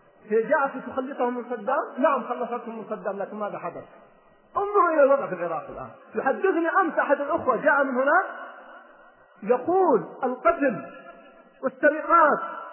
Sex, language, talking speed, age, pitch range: male, Arabic, 125 wpm, 40-59, 265-325 Hz